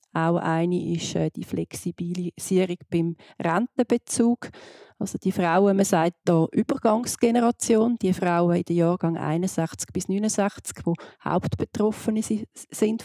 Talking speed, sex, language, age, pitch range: 115 wpm, female, German, 40-59, 175-215 Hz